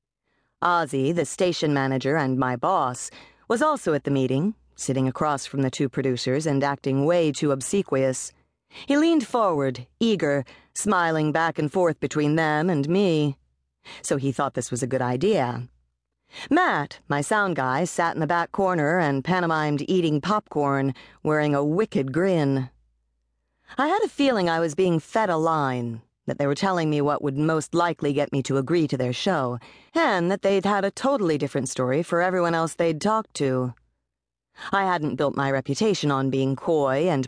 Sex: female